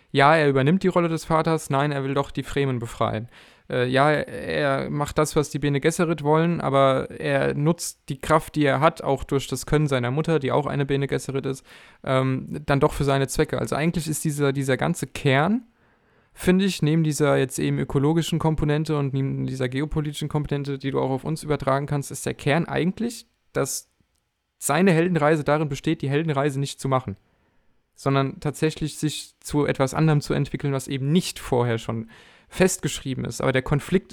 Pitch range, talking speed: 135-155 Hz, 190 wpm